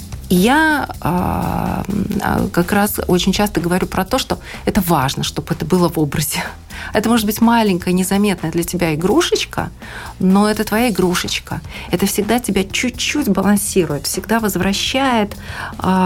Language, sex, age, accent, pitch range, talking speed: Russian, female, 40-59, native, 160-200 Hz, 140 wpm